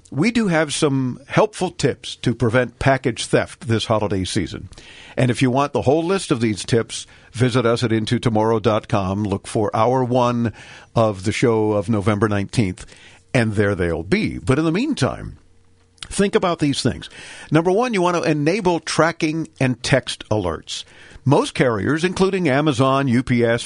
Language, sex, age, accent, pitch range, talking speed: English, male, 50-69, American, 110-160 Hz, 160 wpm